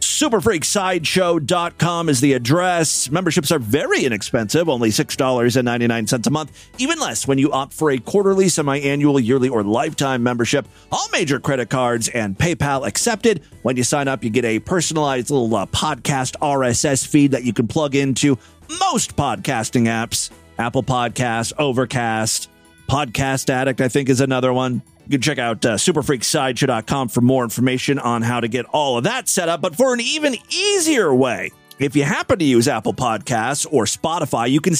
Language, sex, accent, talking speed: English, male, American, 170 wpm